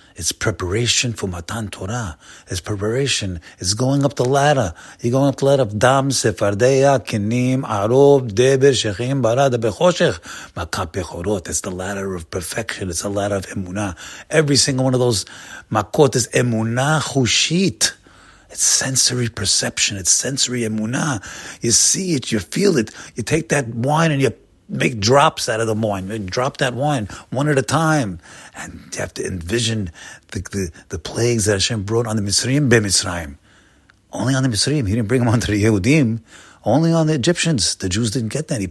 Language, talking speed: English, 170 wpm